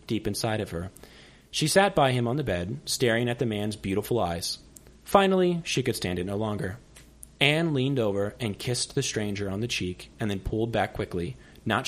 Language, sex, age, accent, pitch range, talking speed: English, male, 30-49, American, 90-135 Hz, 200 wpm